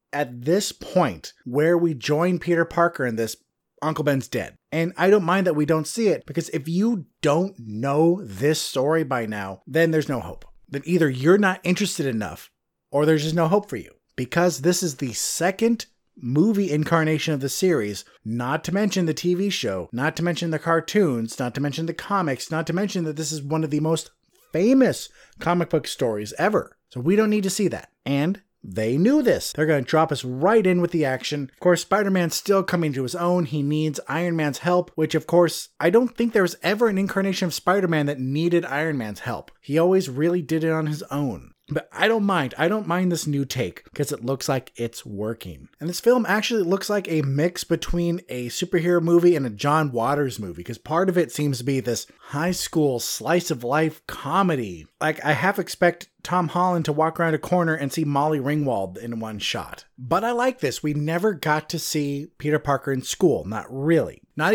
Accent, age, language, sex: American, 30-49, English, male